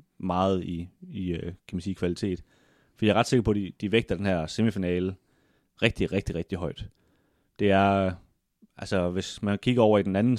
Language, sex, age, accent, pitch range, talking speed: Danish, male, 30-49, native, 90-110 Hz, 195 wpm